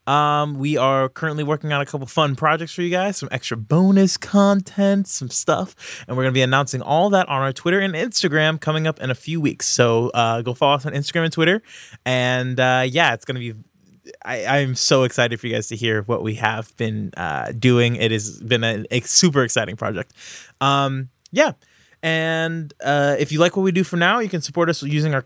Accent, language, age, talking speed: American, English, 20-39, 220 wpm